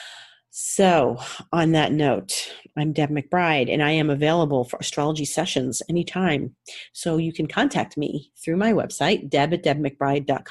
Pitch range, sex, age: 140-175 Hz, female, 40-59